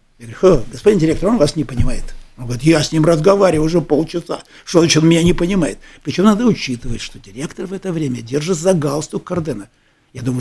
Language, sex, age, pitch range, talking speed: Russian, male, 60-79, 130-175 Hz, 200 wpm